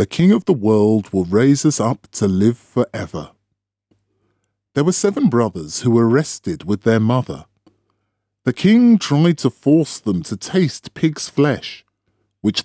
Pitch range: 100-145 Hz